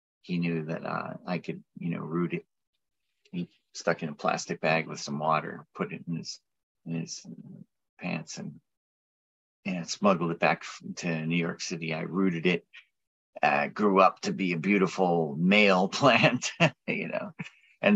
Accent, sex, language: American, male, English